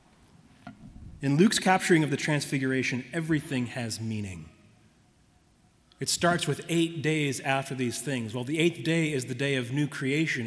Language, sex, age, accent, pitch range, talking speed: English, male, 30-49, American, 130-165 Hz, 155 wpm